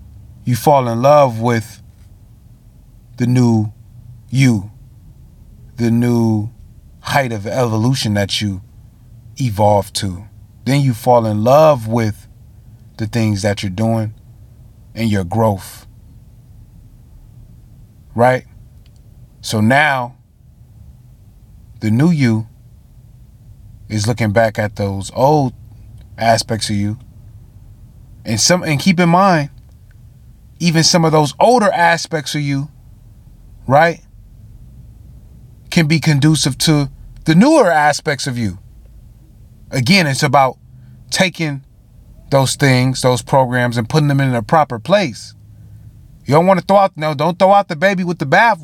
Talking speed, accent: 125 wpm, American